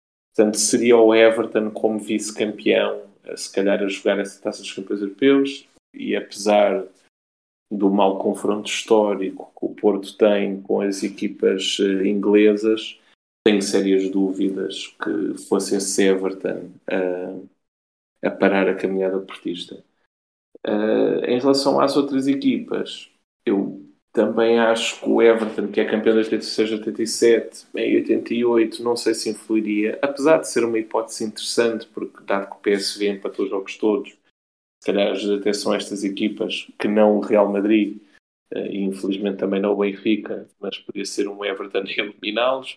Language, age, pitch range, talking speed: Portuguese, 20-39, 100-115 Hz, 145 wpm